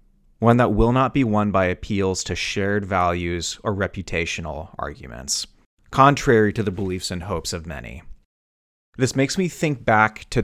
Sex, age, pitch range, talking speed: male, 30-49, 95-115 Hz, 160 wpm